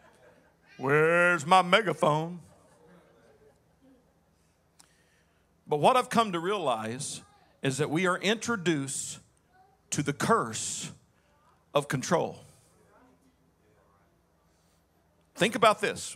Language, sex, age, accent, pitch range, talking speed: English, male, 50-69, American, 130-170 Hz, 80 wpm